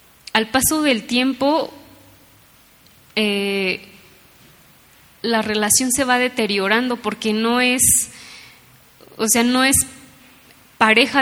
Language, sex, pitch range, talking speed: English, female, 210-255 Hz, 95 wpm